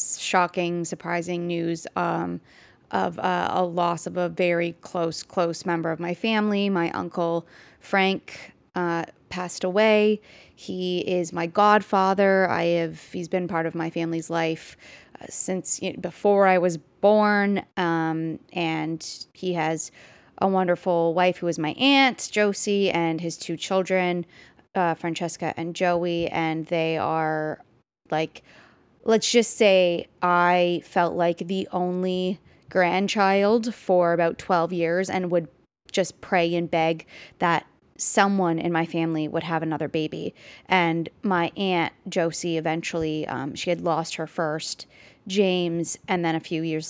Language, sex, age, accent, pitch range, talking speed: English, female, 20-39, American, 160-185 Hz, 140 wpm